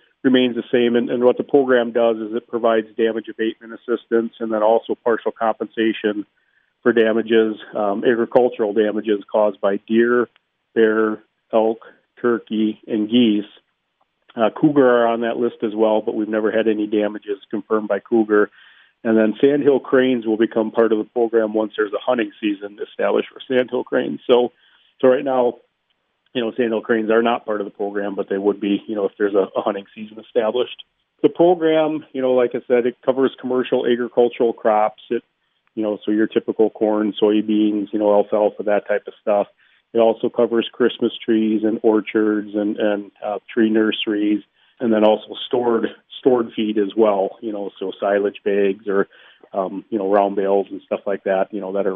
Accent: American